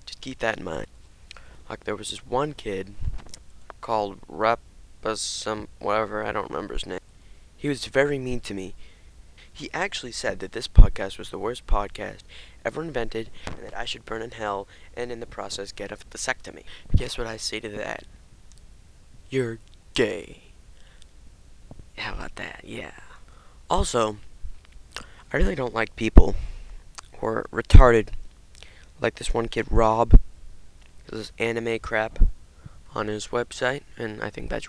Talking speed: 150 wpm